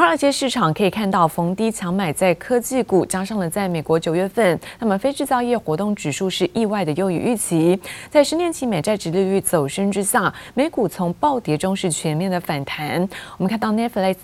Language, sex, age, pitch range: Chinese, female, 20-39, 170-220 Hz